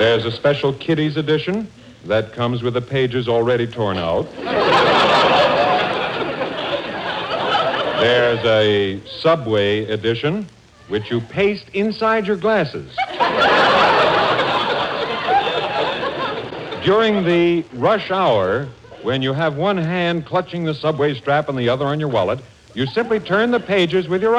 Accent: American